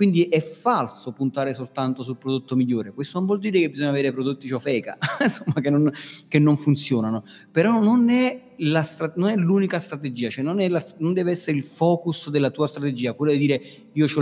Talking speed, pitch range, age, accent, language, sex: 205 wpm, 130-170 Hz, 30-49, native, Italian, male